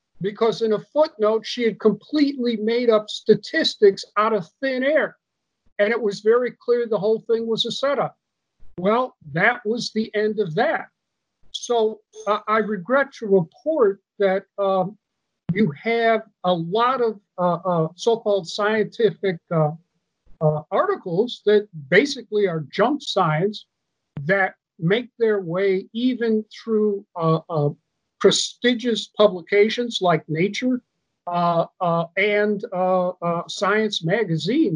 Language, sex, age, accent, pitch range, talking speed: English, male, 50-69, American, 185-230 Hz, 135 wpm